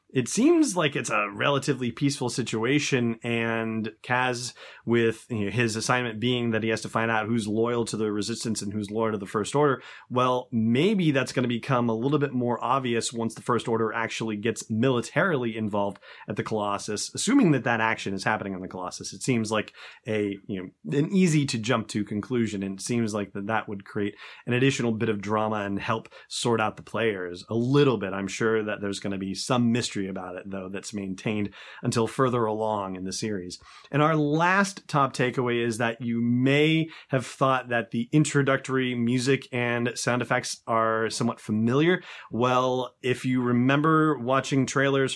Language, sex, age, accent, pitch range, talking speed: English, male, 30-49, American, 110-135 Hz, 195 wpm